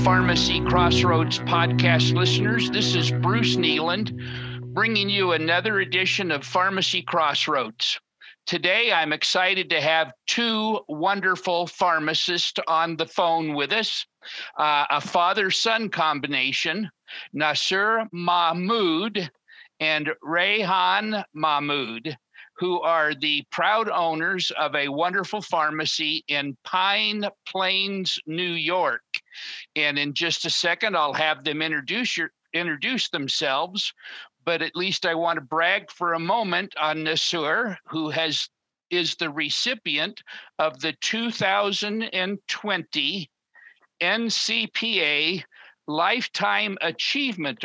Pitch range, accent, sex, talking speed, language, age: 155-195 Hz, American, male, 110 wpm, English, 50-69